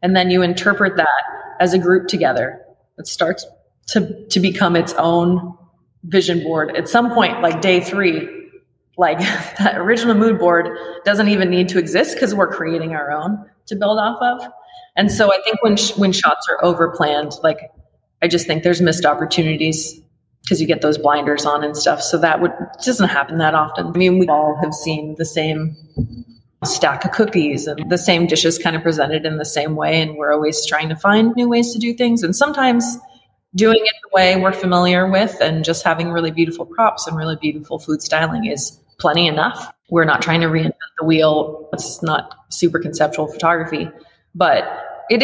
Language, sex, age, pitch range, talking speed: English, female, 20-39, 155-200 Hz, 190 wpm